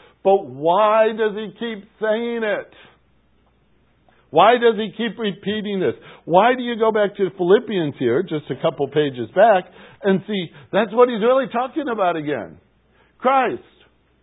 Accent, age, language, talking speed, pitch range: American, 60-79, English, 150 wpm, 150-215 Hz